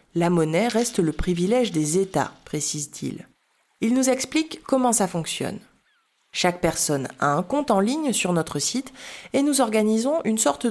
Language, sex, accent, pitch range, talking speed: French, female, French, 170-240 Hz, 175 wpm